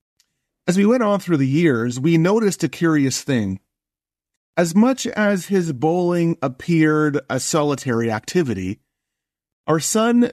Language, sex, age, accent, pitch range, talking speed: English, male, 30-49, American, 130-185 Hz, 135 wpm